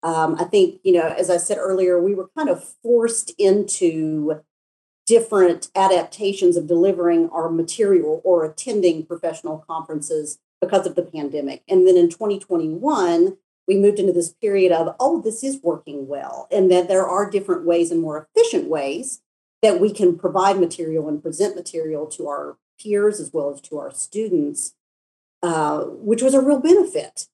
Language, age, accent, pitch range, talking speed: English, 40-59, American, 160-205 Hz, 170 wpm